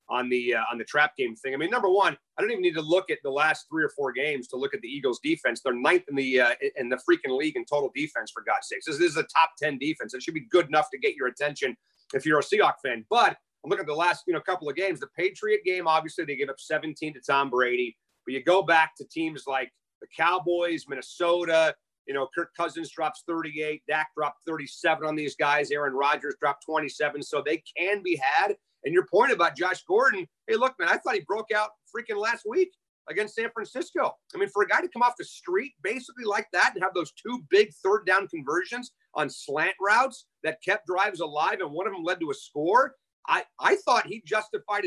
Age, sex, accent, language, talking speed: 30-49, male, American, English, 240 wpm